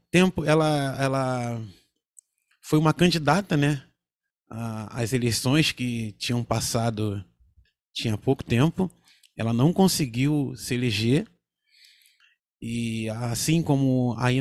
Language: English